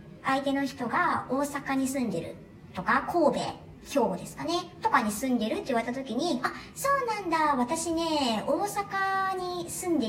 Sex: male